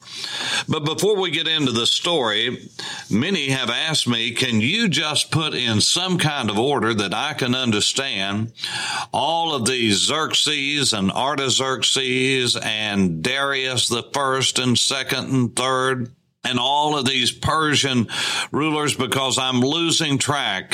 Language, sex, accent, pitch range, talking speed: English, male, American, 115-140 Hz, 140 wpm